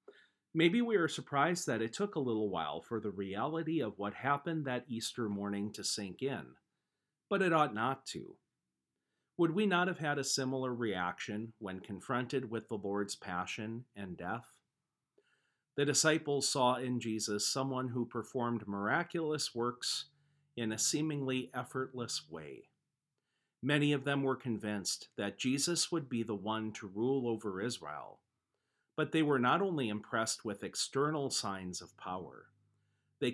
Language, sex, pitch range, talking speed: English, male, 105-145 Hz, 155 wpm